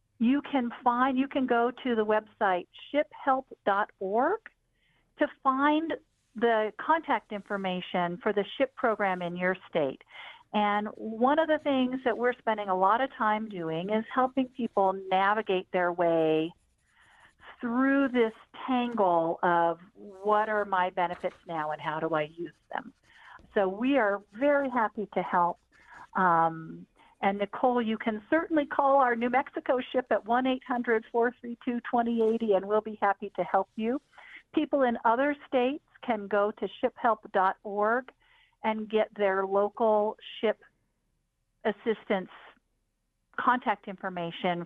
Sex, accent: female, American